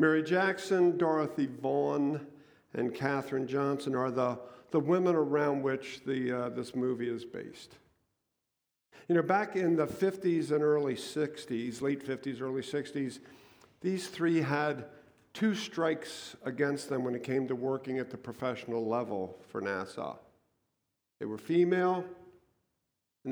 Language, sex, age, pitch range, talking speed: English, male, 50-69, 125-150 Hz, 140 wpm